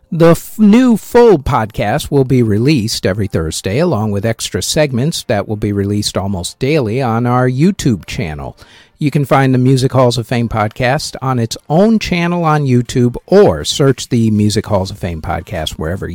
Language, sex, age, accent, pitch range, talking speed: English, male, 50-69, American, 105-145 Hz, 180 wpm